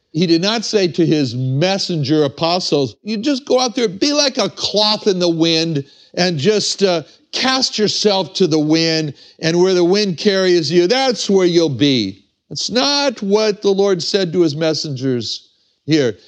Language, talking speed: English, 175 wpm